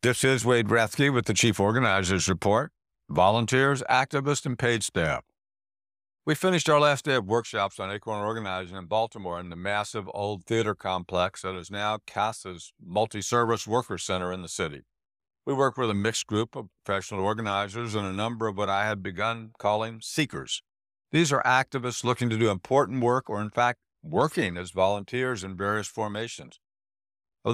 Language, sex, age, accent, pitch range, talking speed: English, male, 60-79, American, 100-125 Hz, 170 wpm